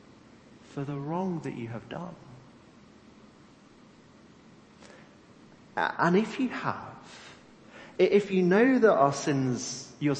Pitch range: 140-180 Hz